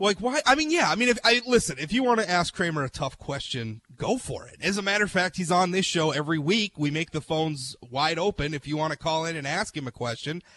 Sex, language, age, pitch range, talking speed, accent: male, English, 30-49, 145-200 Hz, 285 wpm, American